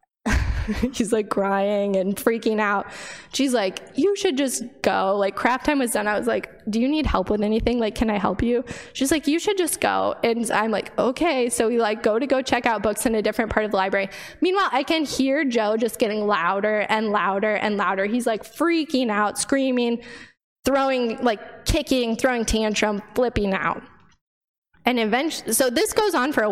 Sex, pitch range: female, 210-255 Hz